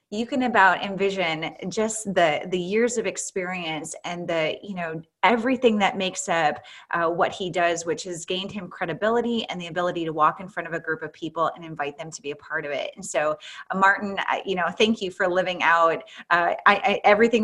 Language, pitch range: English, 170-205 Hz